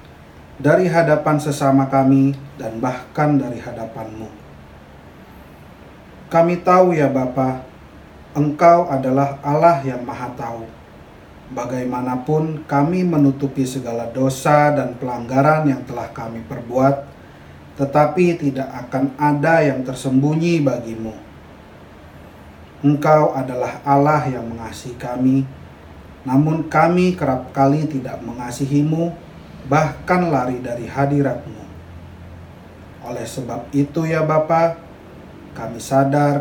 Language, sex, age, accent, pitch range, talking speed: Indonesian, male, 30-49, native, 120-145 Hz, 95 wpm